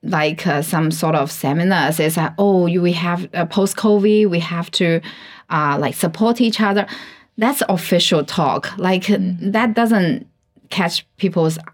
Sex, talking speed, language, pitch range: female, 155 wpm, English, 165-210 Hz